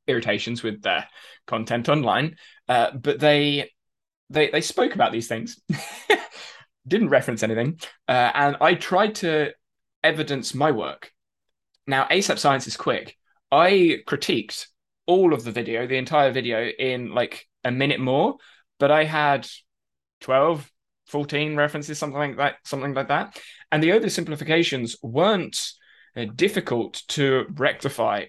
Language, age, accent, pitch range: English, 20-39, British, 120-150 Hz